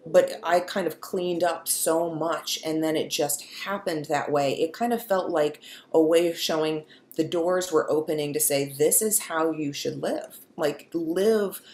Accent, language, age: American, English, 30-49